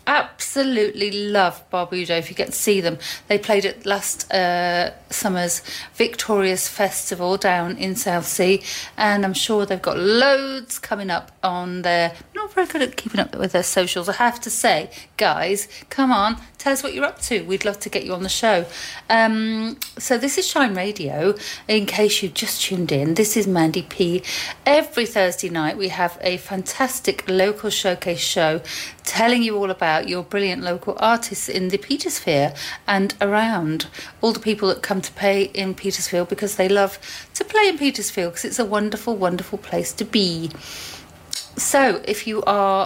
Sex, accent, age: female, British, 40-59